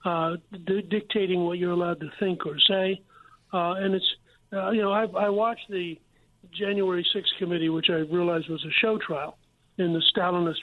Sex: male